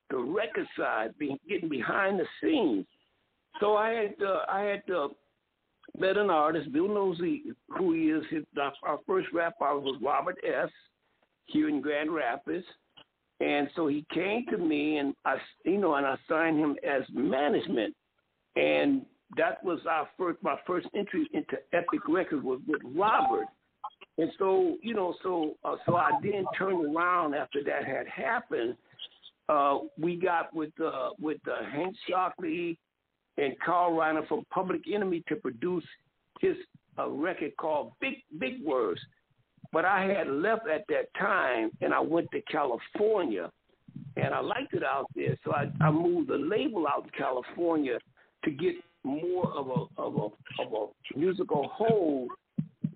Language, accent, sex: English, American, male